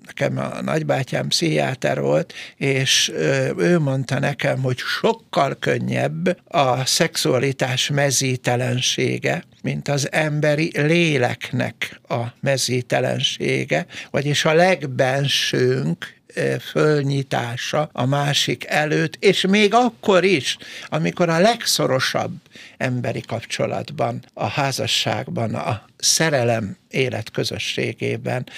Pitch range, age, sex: 125-160 Hz, 60-79, male